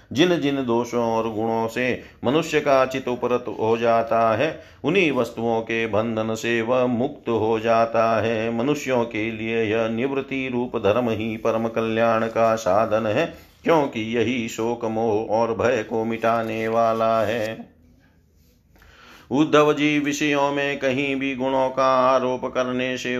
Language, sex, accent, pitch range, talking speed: Hindi, male, native, 115-130 Hz, 145 wpm